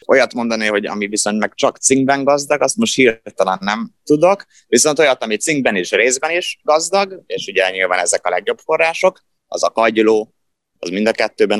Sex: male